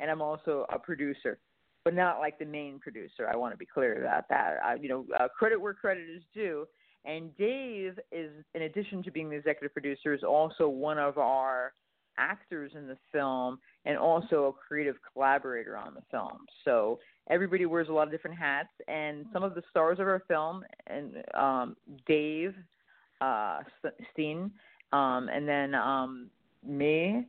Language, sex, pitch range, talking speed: English, female, 140-175 Hz, 180 wpm